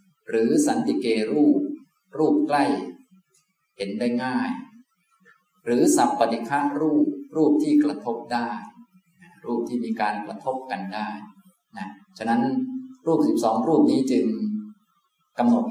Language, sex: Thai, male